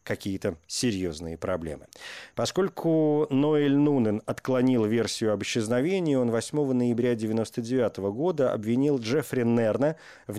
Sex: male